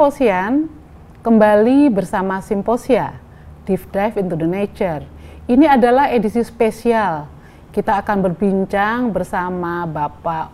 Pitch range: 170-205 Hz